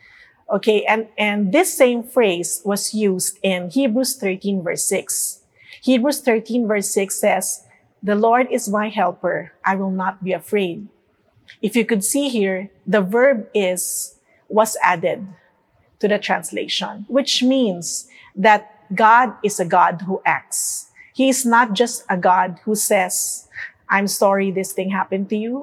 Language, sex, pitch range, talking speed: English, female, 190-235 Hz, 150 wpm